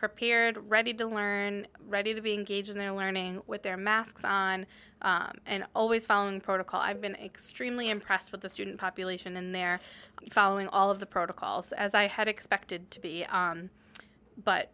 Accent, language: American, English